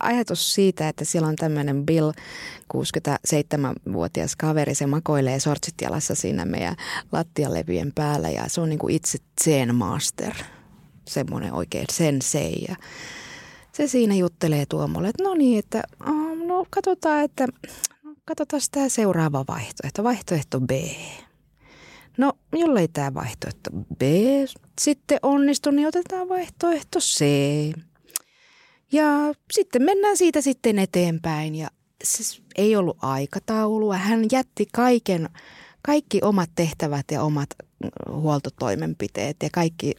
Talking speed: 110 wpm